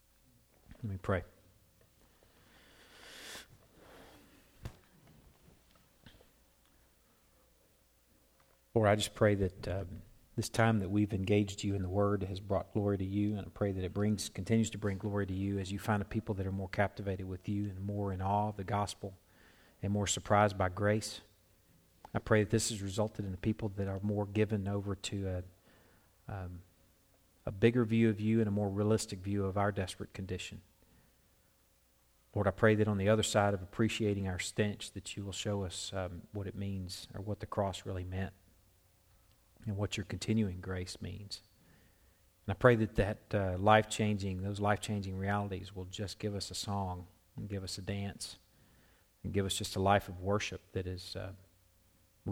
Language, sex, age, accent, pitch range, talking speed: English, male, 40-59, American, 95-105 Hz, 175 wpm